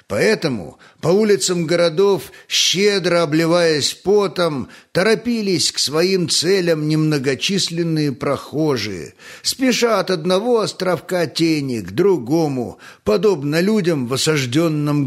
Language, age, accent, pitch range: Russian, 50-69, native, 140-185 Hz